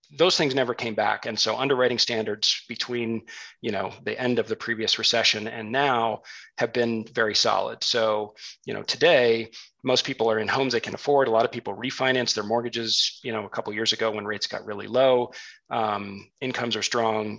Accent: American